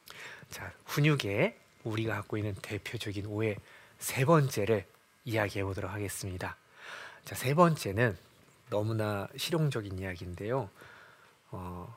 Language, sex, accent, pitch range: Korean, male, native, 105-145 Hz